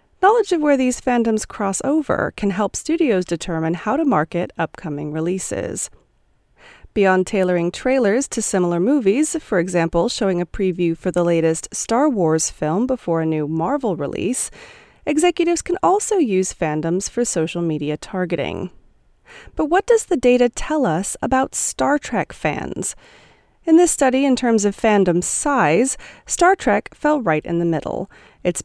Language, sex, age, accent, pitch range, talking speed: English, female, 30-49, American, 170-285 Hz, 155 wpm